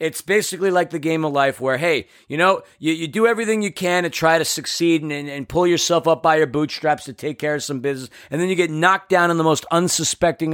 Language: English